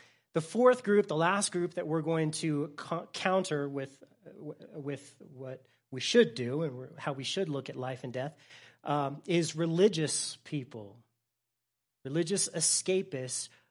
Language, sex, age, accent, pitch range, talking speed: English, male, 30-49, American, 125-170 Hz, 140 wpm